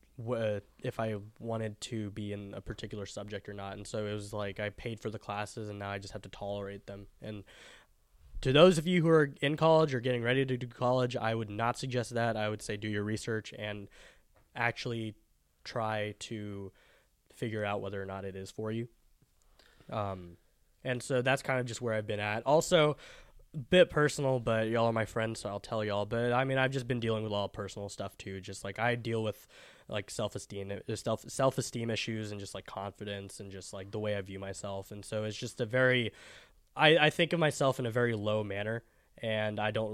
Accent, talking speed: American, 220 wpm